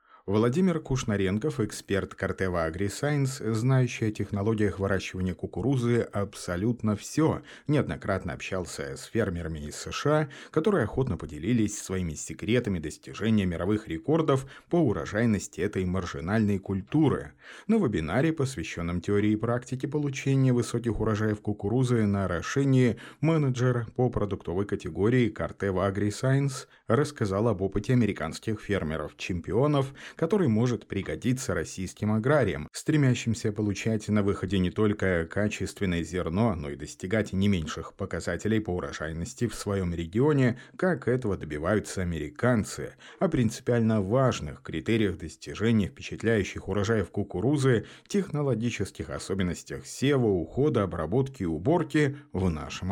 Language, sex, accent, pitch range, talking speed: Russian, male, native, 95-130 Hz, 110 wpm